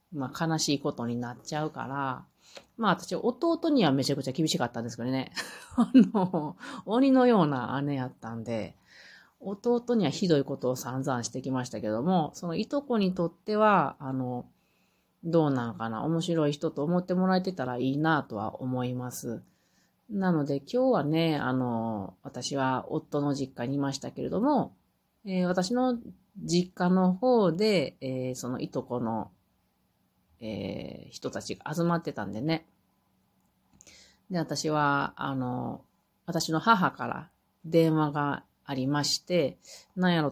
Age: 30-49